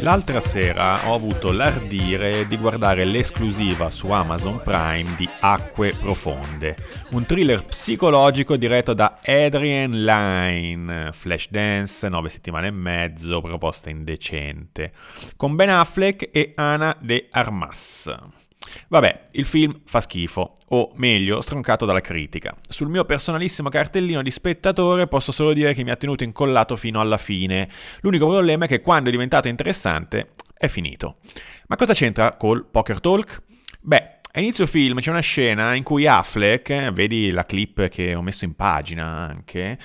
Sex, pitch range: male, 95-145 Hz